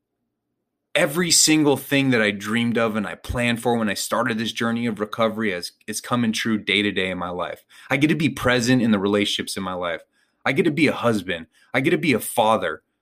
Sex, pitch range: male, 100-145 Hz